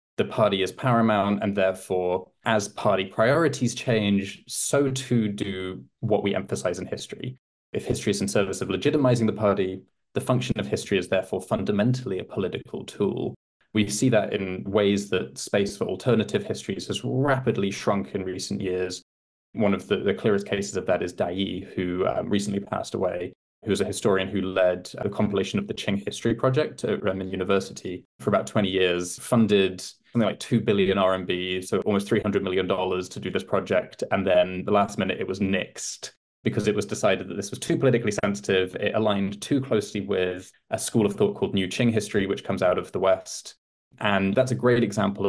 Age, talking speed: 20-39, 190 wpm